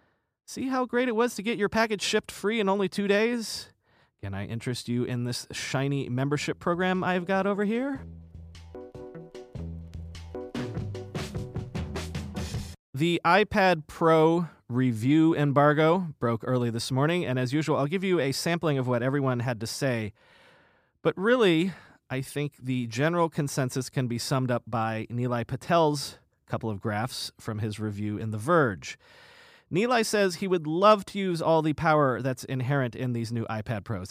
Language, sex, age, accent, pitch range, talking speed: English, male, 30-49, American, 125-170 Hz, 160 wpm